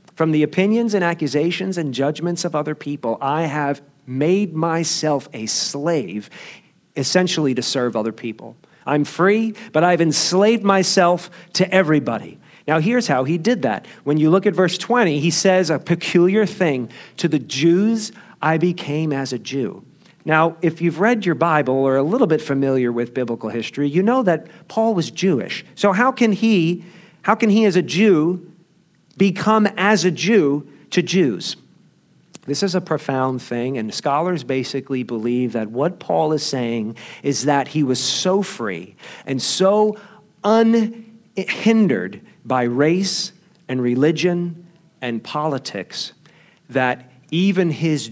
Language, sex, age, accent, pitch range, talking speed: English, male, 40-59, American, 135-190 Hz, 150 wpm